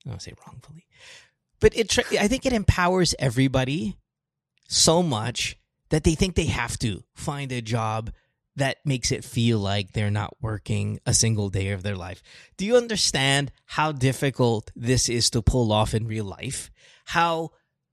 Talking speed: 170 wpm